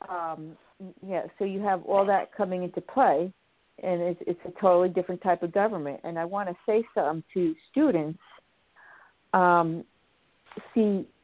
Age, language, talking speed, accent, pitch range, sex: 50-69, English, 155 wpm, American, 175-200 Hz, female